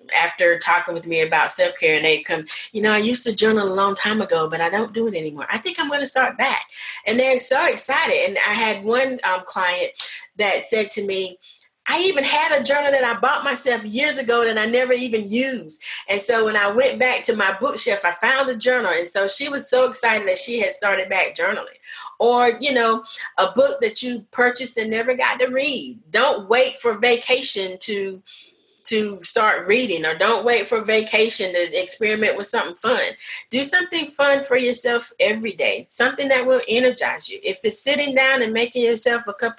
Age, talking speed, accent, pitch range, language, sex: 30-49, 210 wpm, American, 215-275 Hz, English, female